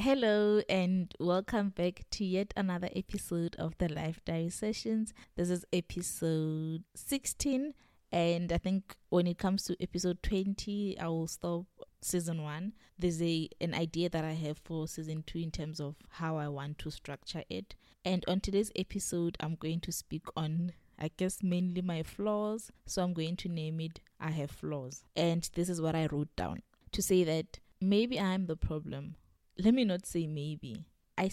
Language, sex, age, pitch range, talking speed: English, female, 20-39, 160-200 Hz, 175 wpm